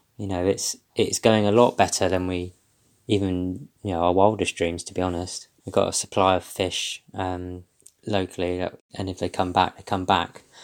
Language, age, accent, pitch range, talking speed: English, 20-39, British, 90-105 Hz, 195 wpm